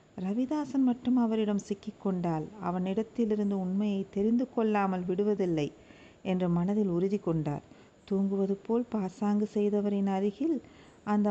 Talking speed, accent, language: 105 wpm, native, Tamil